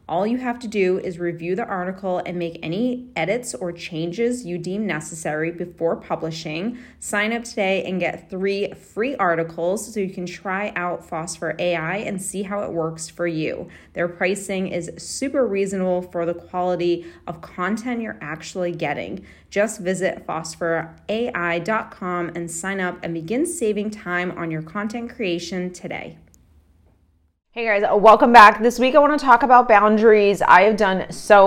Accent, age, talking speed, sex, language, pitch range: American, 30-49, 165 wpm, female, English, 170-215 Hz